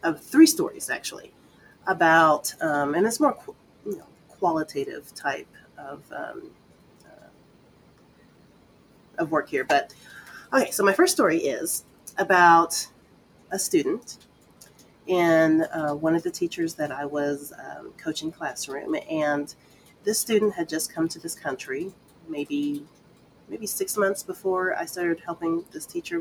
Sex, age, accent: female, 30-49, American